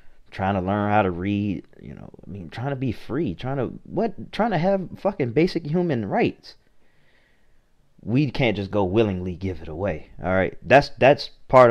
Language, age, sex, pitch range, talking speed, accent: English, 30-49, male, 90-105 Hz, 190 wpm, American